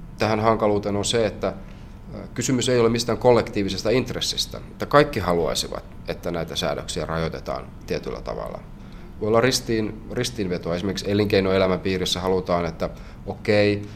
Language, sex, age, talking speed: Finnish, male, 30-49, 125 wpm